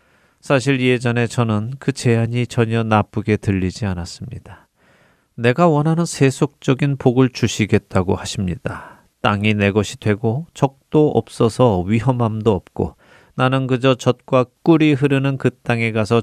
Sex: male